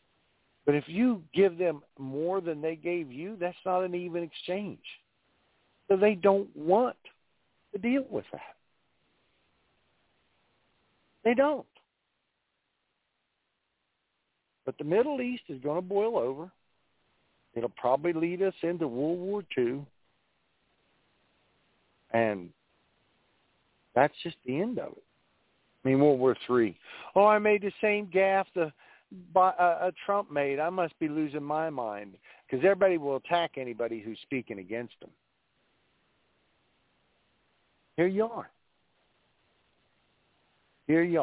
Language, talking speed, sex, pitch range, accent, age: English, 125 wpm, male, 130-185 Hz, American, 60-79